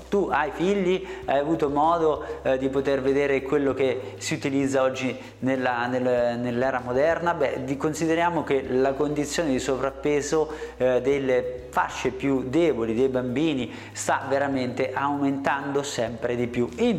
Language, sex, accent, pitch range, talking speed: Italian, male, native, 125-155 Hz, 145 wpm